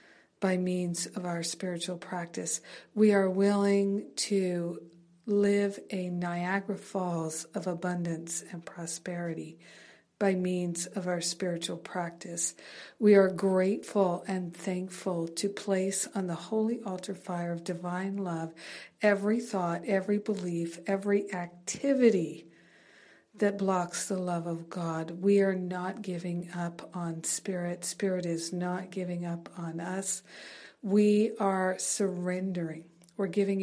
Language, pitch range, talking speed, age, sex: English, 175-200 Hz, 125 wpm, 50-69, female